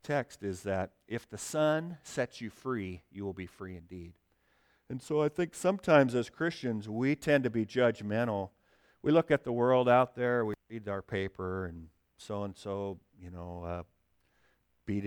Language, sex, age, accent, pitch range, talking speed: English, male, 40-59, American, 85-110 Hz, 180 wpm